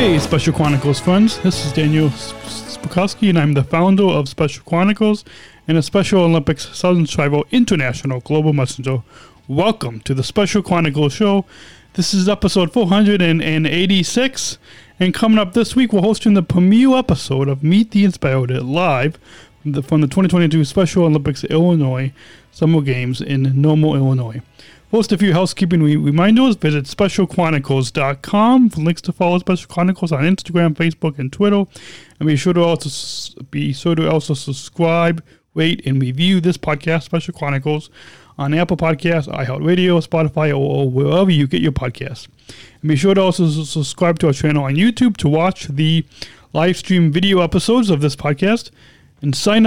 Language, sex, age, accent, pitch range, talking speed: English, male, 30-49, American, 140-185 Hz, 155 wpm